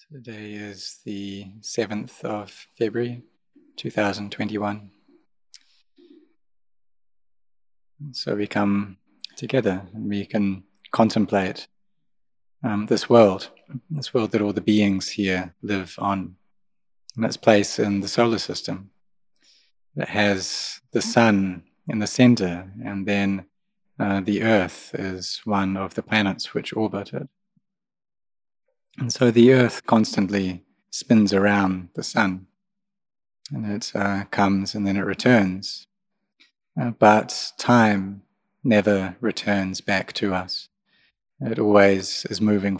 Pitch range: 100-120 Hz